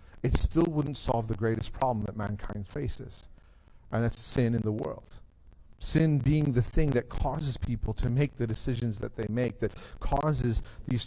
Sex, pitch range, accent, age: male, 105-130 Hz, American, 40-59